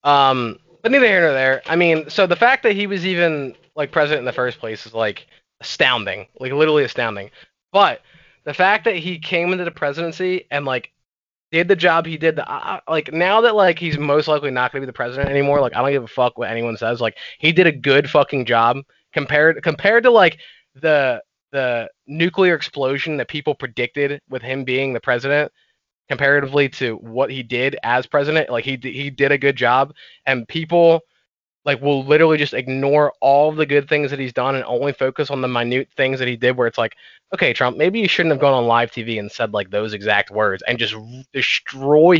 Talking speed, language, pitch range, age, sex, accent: 215 wpm, English, 130-165 Hz, 20-39, male, American